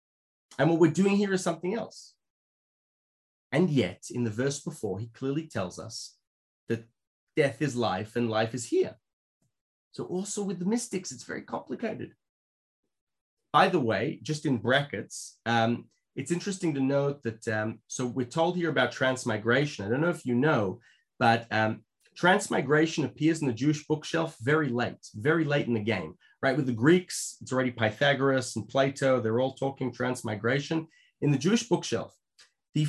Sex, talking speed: male, 170 wpm